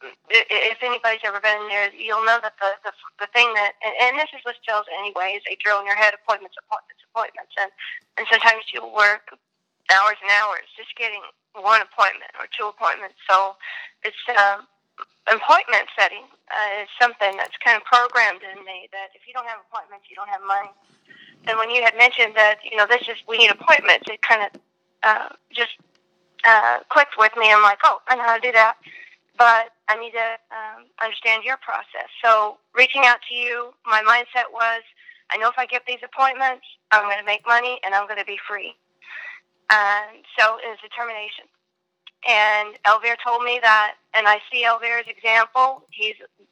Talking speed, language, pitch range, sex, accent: 195 wpm, English, 210-240 Hz, female, American